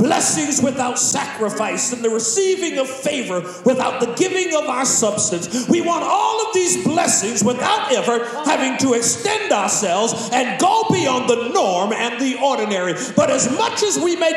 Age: 40-59